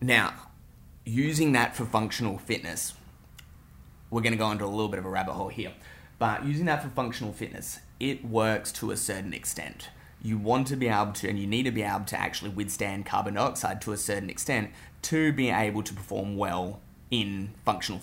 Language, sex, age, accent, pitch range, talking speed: English, male, 20-39, Australian, 95-115 Hz, 195 wpm